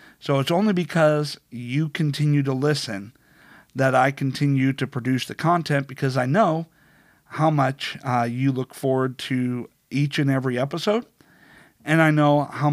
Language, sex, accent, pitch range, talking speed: English, male, American, 125-150 Hz, 155 wpm